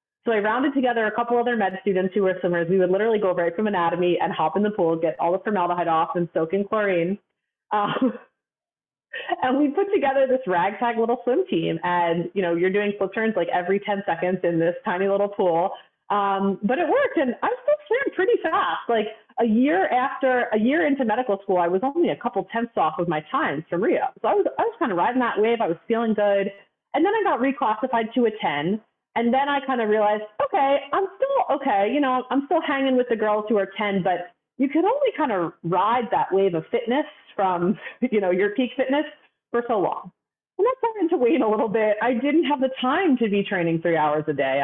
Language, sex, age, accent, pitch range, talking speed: English, female, 30-49, American, 190-265 Hz, 235 wpm